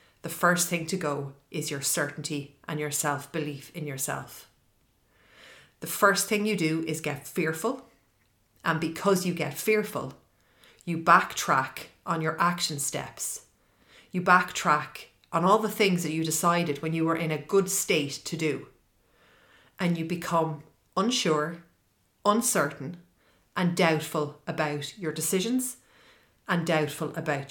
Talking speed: 135 wpm